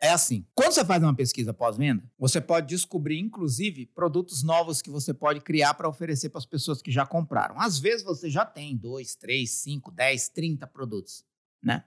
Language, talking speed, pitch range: Portuguese, 190 wpm, 135-205 Hz